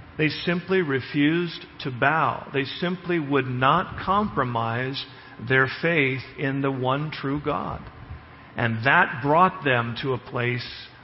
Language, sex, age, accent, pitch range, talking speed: English, male, 50-69, American, 120-150 Hz, 130 wpm